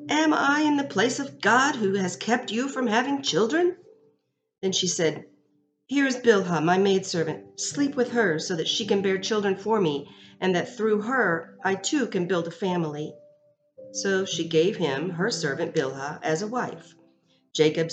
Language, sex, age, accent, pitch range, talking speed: English, female, 40-59, American, 160-230 Hz, 180 wpm